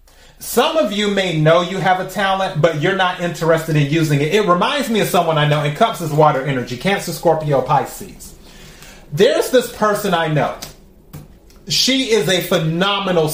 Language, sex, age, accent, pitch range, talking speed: English, male, 30-49, American, 160-195 Hz, 180 wpm